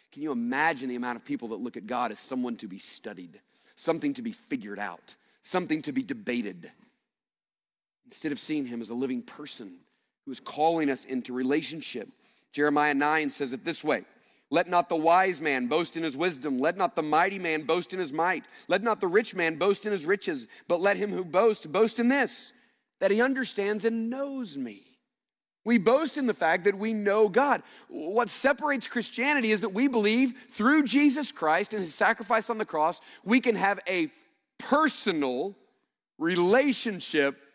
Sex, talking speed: male, 185 wpm